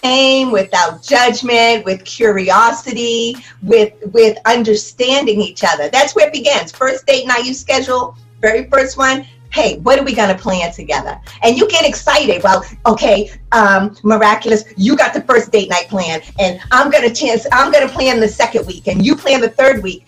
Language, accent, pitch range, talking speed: English, American, 220-285 Hz, 185 wpm